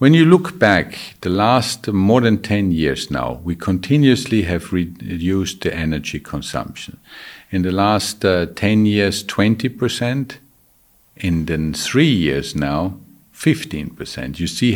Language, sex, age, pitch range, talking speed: English, male, 50-69, 80-100 Hz, 140 wpm